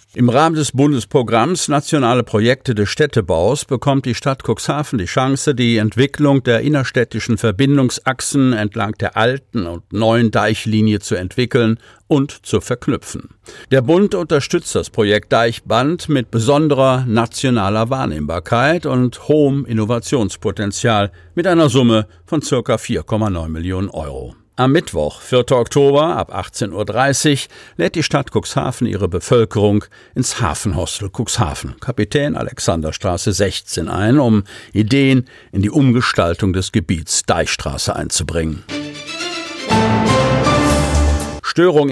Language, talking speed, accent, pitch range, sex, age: German, 115 wpm, German, 105-135 Hz, male, 50-69